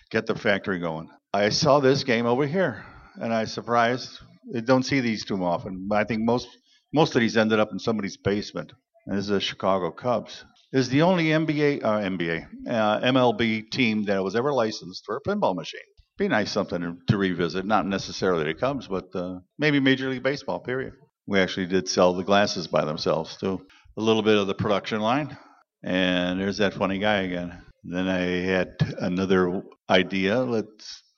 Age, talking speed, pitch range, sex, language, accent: 50-69, 190 wpm, 95-130 Hz, male, English, American